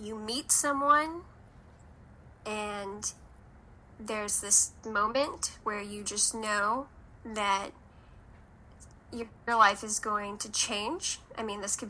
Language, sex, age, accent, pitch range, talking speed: English, female, 10-29, American, 200-225 Hz, 115 wpm